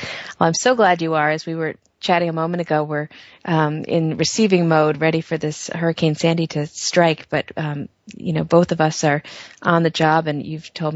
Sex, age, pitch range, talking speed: female, 30-49, 155-175 Hz, 215 wpm